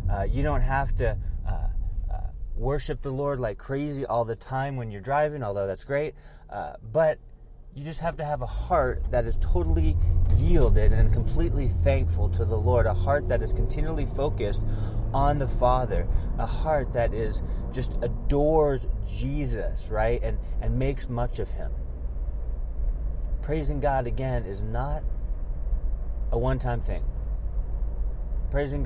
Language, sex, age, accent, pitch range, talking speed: English, male, 30-49, American, 85-130 Hz, 150 wpm